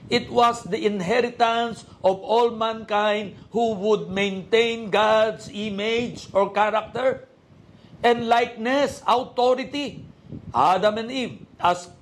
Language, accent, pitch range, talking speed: Filipino, native, 155-225 Hz, 105 wpm